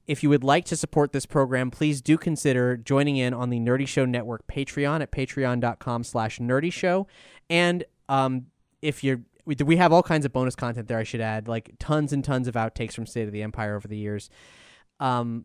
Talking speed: 210 wpm